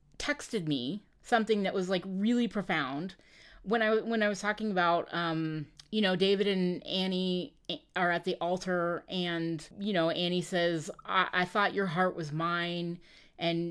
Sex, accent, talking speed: female, American, 165 wpm